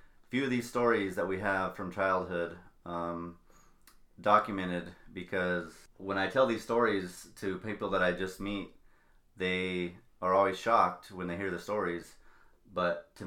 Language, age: English, 30-49